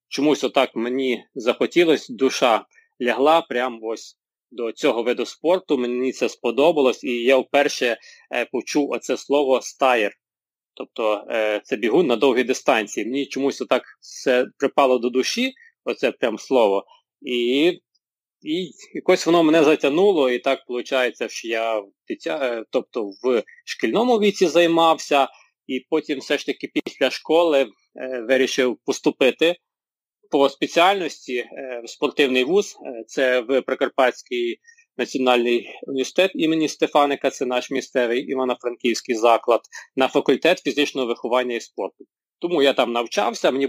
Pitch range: 125-170 Hz